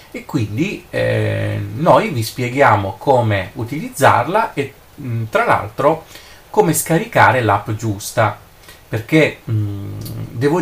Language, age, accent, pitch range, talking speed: Italian, 30-49, native, 110-135 Hz, 100 wpm